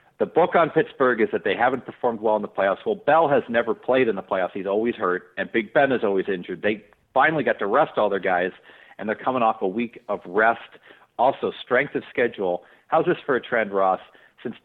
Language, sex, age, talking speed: English, male, 50-69, 235 wpm